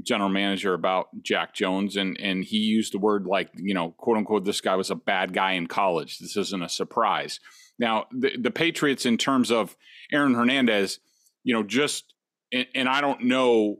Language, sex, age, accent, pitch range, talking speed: English, male, 40-59, American, 105-140 Hz, 195 wpm